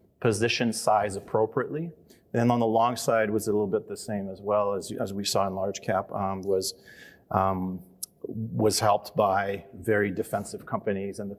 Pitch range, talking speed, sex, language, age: 105-120 Hz, 180 wpm, male, English, 30-49